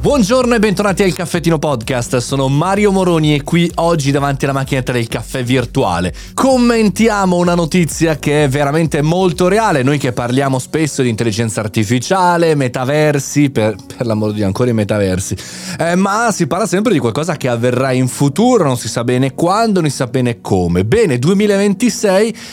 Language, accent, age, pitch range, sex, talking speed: Italian, native, 30-49, 125-180 Hz, male, 170 wpm